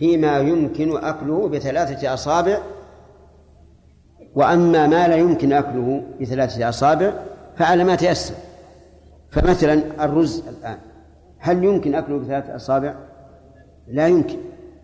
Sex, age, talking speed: male, 50-69, 95 wpm